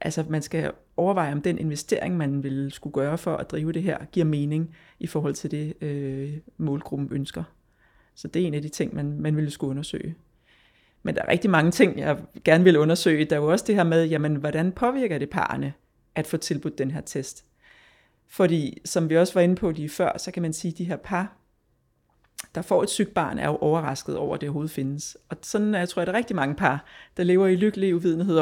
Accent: native